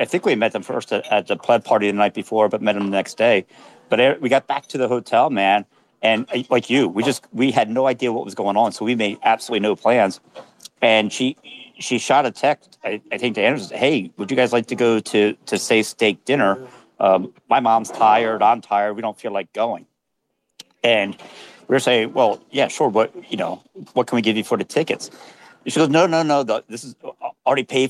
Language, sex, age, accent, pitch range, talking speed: English, male, 50-69, American, 110-135 Hz, 235 wpm